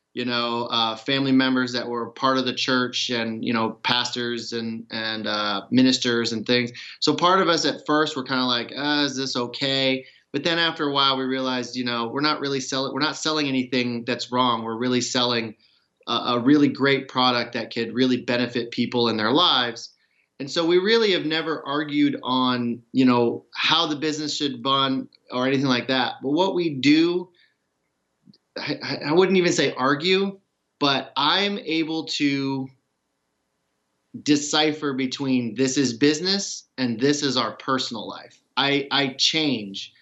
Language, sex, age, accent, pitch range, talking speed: English, male, 30-49, American, 120-145 Hz, 175 wpm